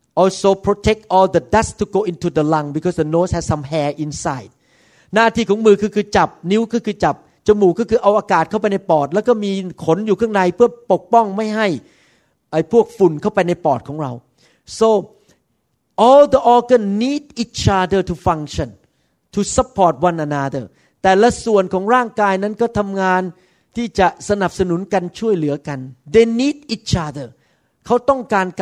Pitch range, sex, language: 170-220 Hz, male, Thai